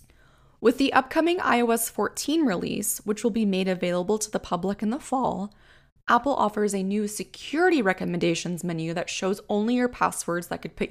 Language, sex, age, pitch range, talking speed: English, female, 20-39, 175-220 Hz, 175 wpm